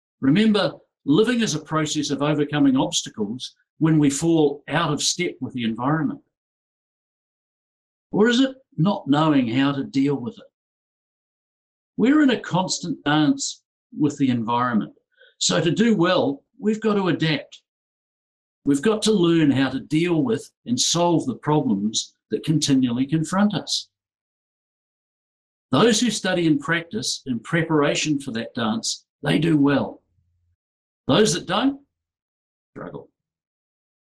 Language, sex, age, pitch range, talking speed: English, male, 60-79, 140-210 Hz, 135 wpm